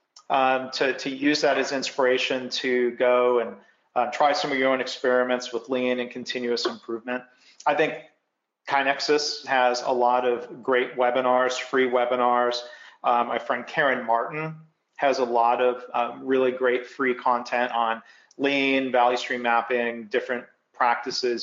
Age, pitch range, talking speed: 40-59, 120-140 Hz, 150 wpm